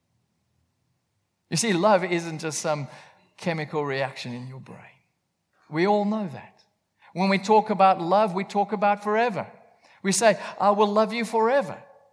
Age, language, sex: 50-69, English, male